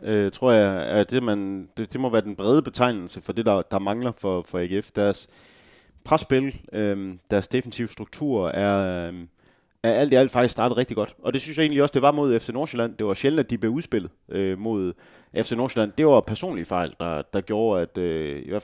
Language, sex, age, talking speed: Danish, male, 30-49, 220 wpm